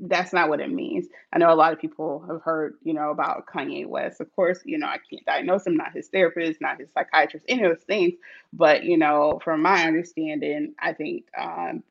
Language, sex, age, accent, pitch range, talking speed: English, female, 30-49, American, 160-205 Hz, 225 wpm